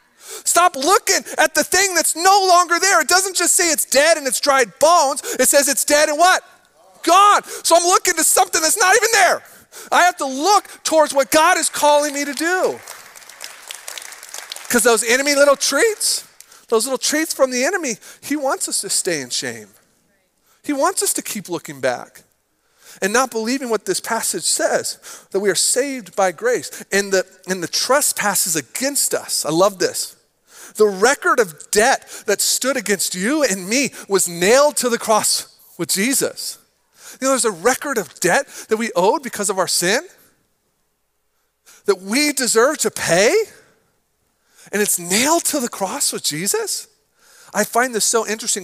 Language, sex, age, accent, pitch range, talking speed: English, male, 40-59, American, 205-320 Hz, 175 wpm